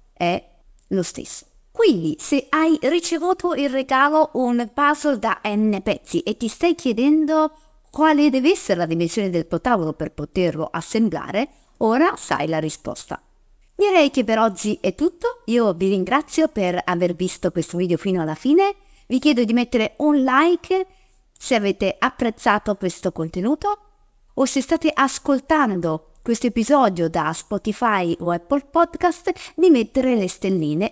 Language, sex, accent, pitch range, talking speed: Italian, female, native, 180-290 Hz, 145 wpm